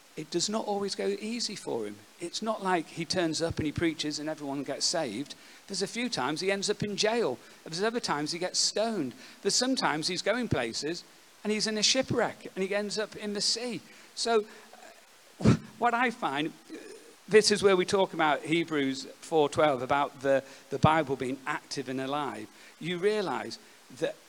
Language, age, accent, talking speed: English, 50-69, British, 190 wpm